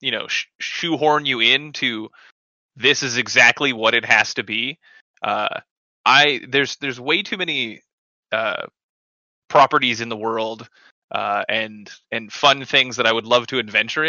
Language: English